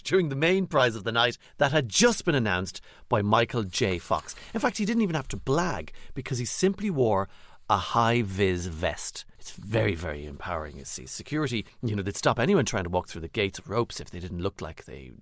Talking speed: 225 wpm